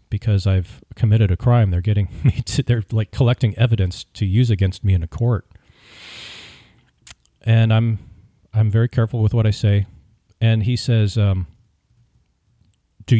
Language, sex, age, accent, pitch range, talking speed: English, male, 40-59, American, 95-120 Hz, 155 wpm